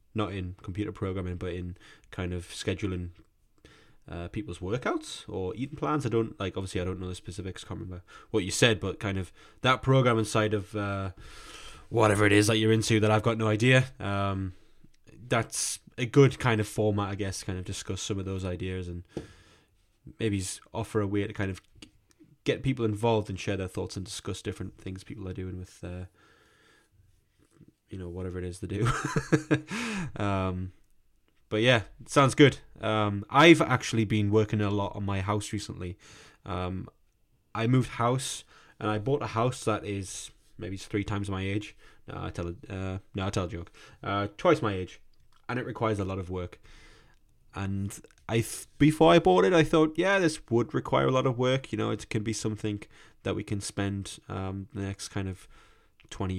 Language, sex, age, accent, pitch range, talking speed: English, male, 20-39, British, 95-115 Hz, 195 wpm